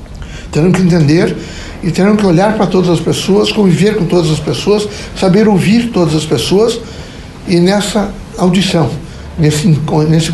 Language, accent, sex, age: Portuguese, Brazilian, male, 60-79